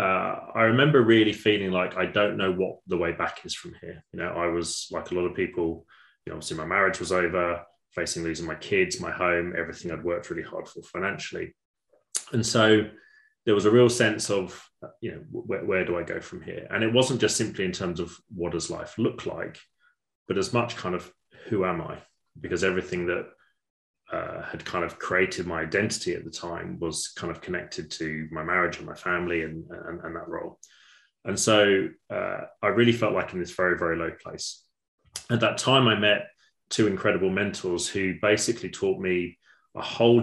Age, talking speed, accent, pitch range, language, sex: 20-39, 205 wpm, British, 85-110 Hz, English, male